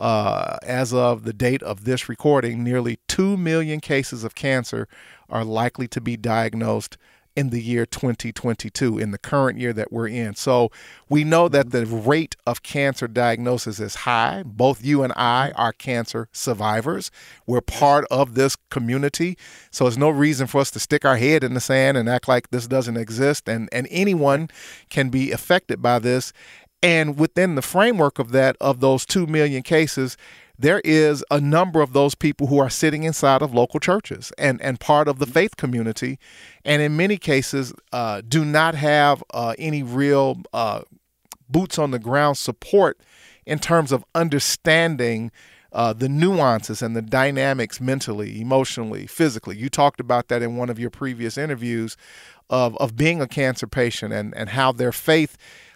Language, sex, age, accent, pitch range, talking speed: English, male, 40-59, American, 120-145 Hz, 175 wpm